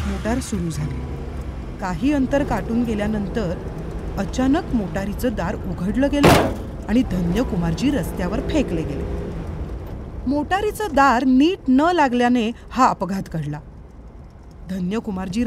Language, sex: Marathi, female